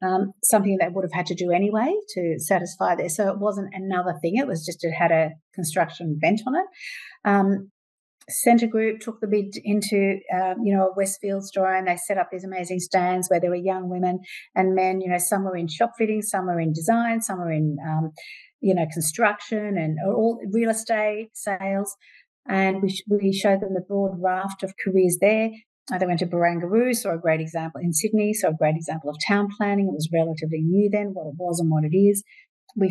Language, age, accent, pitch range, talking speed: English, 50-69, Australian, 175-210 Hz, 215 wpm